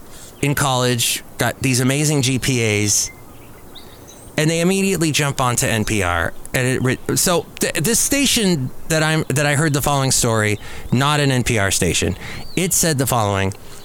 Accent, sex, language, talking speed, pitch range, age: American, male, English, 135 wpm, 105-150 Hz, 30-49